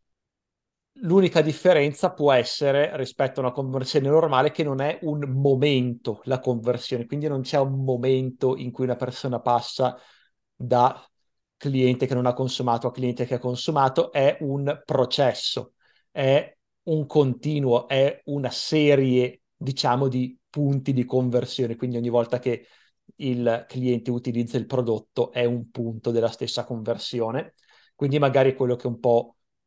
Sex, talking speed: male, 150 wpm